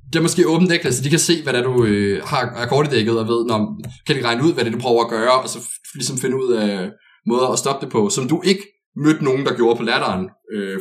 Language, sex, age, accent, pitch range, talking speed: Danish, male, 20-39, native, 110-165 Hz, 285 wpm